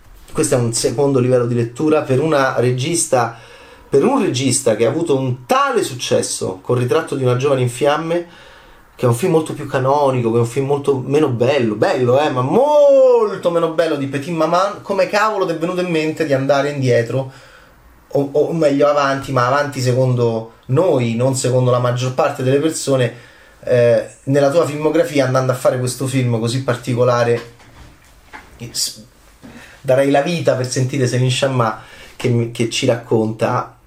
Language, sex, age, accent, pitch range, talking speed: Italian, male, 30-49, native, 120-170 Hz, 170 wpm